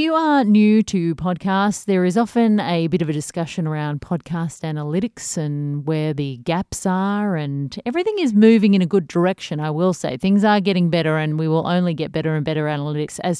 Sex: female